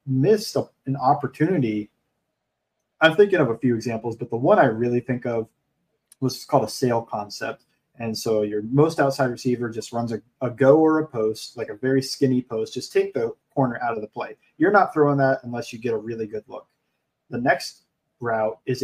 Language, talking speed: English, 205 wpm